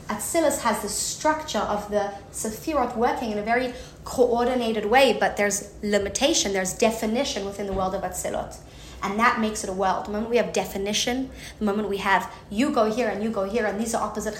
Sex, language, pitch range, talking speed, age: female, English, 205-250 Hz, 205 wpm, 30-49